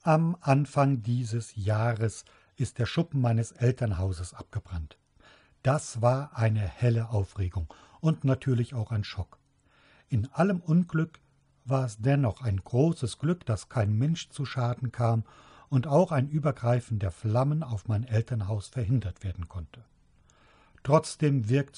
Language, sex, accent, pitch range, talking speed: German, male, German, 100-135 Hz, 135 wpm